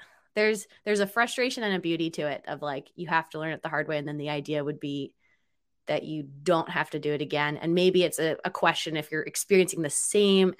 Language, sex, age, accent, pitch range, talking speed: English, female, 20-39, American, 160-195 Hz, 250 wpm